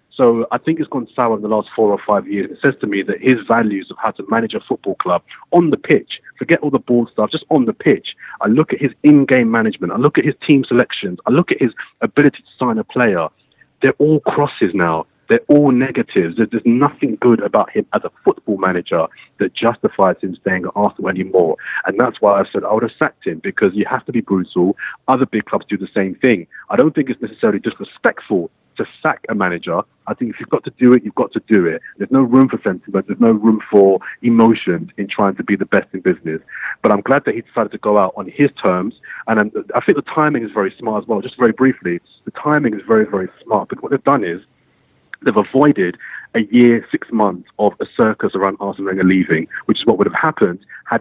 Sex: male